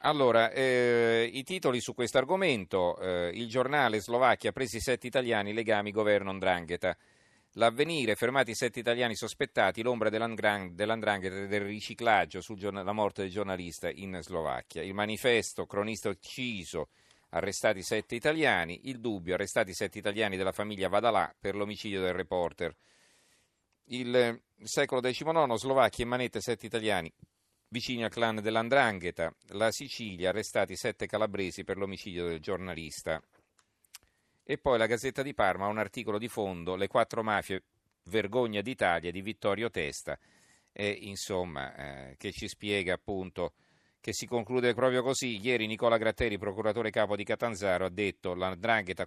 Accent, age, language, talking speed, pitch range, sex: native, 40-59, Italian, 140 wpm, 95-120 Hz, male